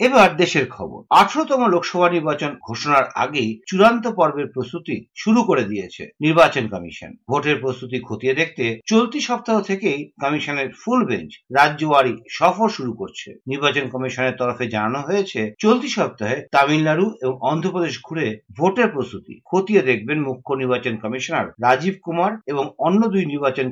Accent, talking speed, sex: native, 100 wpm, male